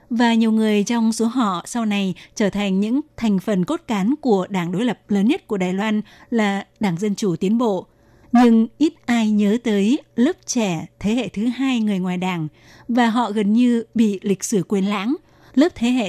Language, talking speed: Vietnamese, 210 wpm